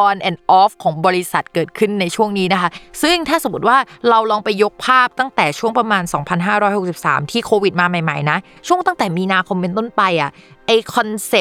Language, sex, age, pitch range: Thai, female, 20-39, 170-220 Hz